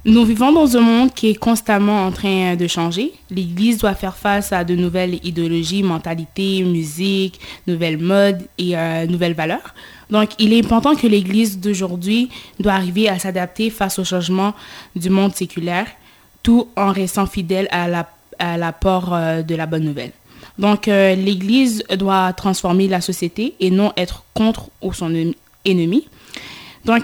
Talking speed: 160 wpm